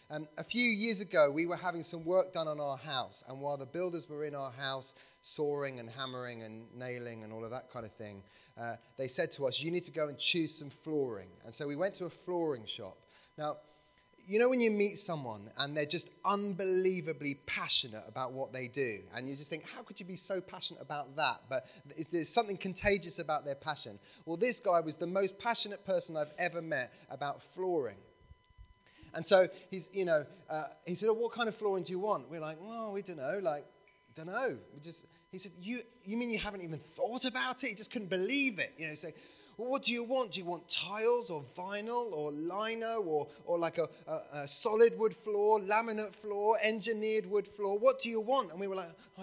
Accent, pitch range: British, 140-205 Hz